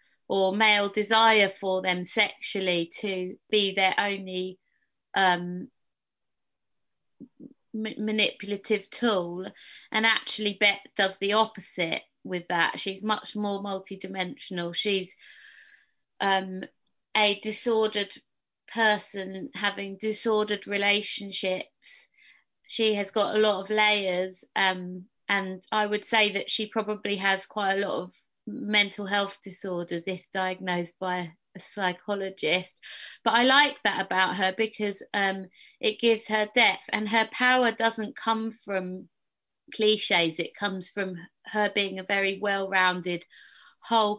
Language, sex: German, female